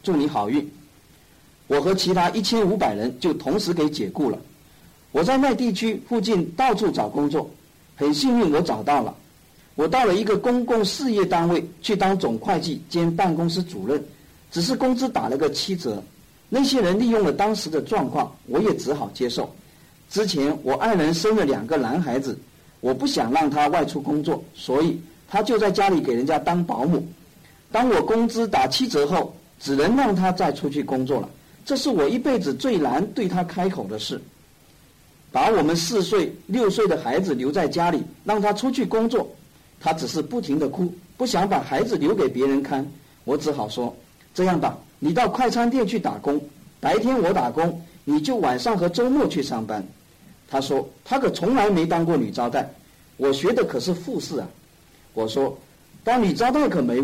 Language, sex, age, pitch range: Chinese, male, 50-69, 150-230 Hz